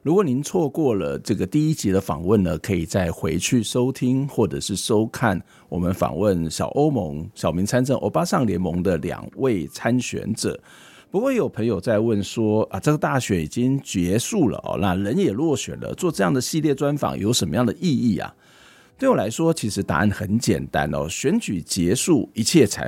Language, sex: Chinese, male